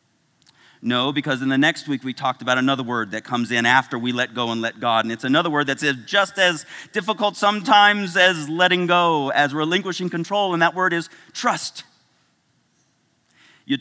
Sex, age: male, 40-59